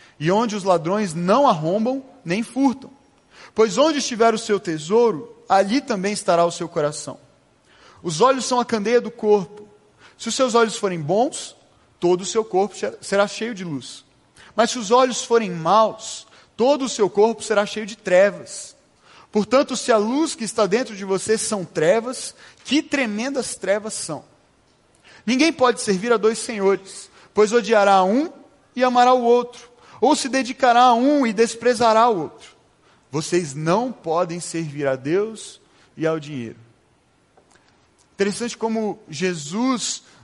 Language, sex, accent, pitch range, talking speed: Portuguese, male, Brazilian, 180-235 Hz, 155 wpm